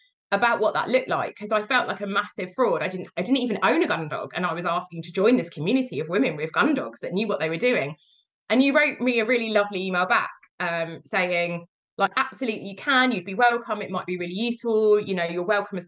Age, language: 20-39, English